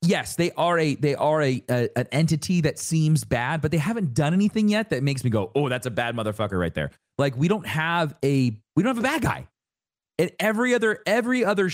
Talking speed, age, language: 235 wpm, 30-49, English